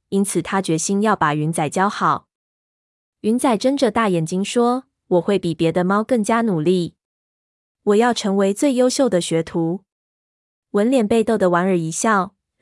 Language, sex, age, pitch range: Chinese, female, 20-39, 175-225 Hz